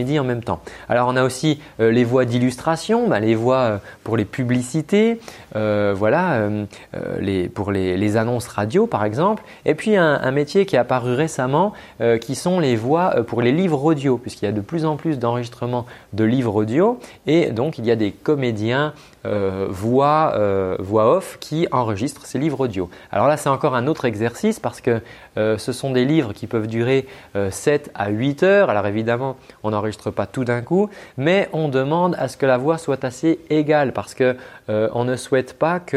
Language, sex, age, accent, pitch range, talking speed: French, male, 30-49, French, 110-150 Hz, 205 wpm